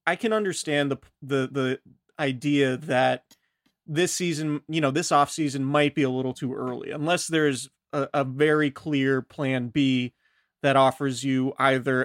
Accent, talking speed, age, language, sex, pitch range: American, 165 wpm, 30-49, English, male, 130-150 Hz